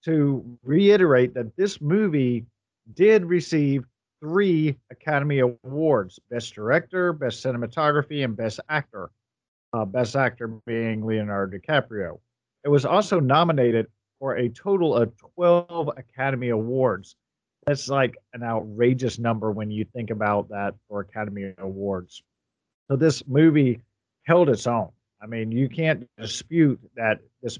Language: English